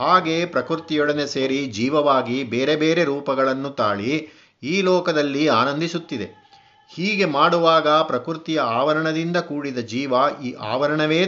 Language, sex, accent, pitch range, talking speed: Kannada, male, native, 130-165 Hz, 100 wpm